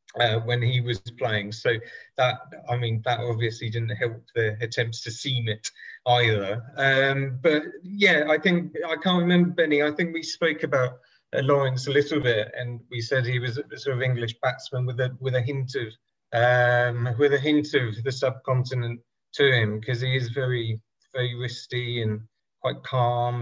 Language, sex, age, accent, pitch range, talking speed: English, male, 30-49, British, 120-140 Hz, 185 wpm